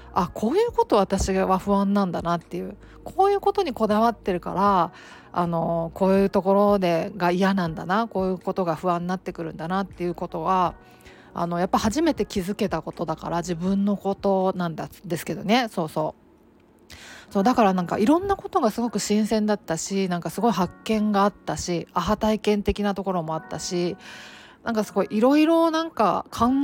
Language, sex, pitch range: Japanese, female, 175-215 Hz